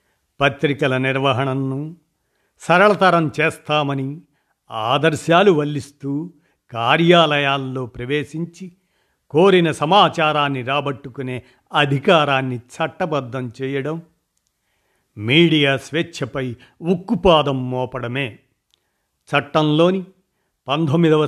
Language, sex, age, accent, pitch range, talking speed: Telugu, male, 50-69, native, 135-165 Hz, 55 wpm